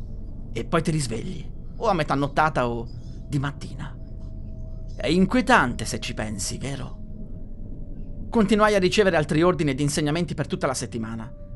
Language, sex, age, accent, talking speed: Italian, male, 30-49, native, 145 wpm